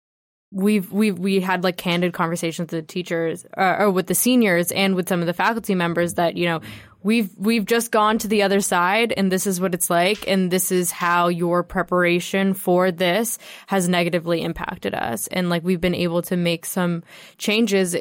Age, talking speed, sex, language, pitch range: 10-29, 200 wpm, female, English, 170-195 Hz